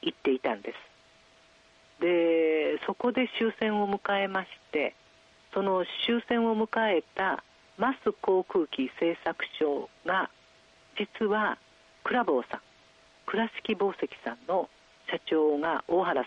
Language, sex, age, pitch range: Japanese, female, 50-69, 145-210 Hz